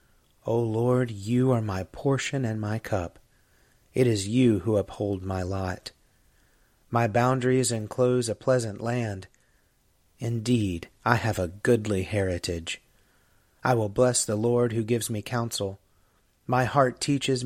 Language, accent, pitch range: English, American, 100-125 Hz